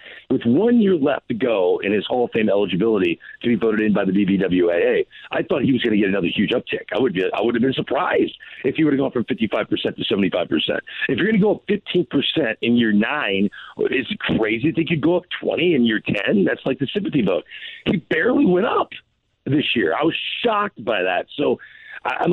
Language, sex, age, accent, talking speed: English, male, 50-69, American, 240 wpm